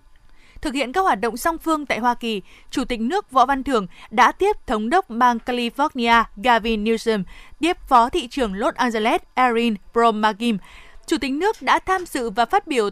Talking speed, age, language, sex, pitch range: 190 wpm, 20-39, Vietnamese, female, 225-285 Hz